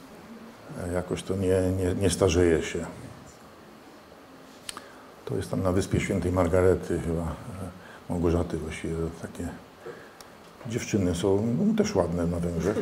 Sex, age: male, 50-69